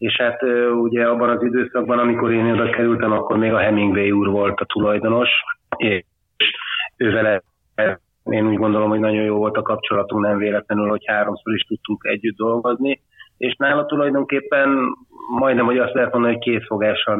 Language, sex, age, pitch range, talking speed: Hungarian, male, 30-49, 110-125 Hz, 165 wpm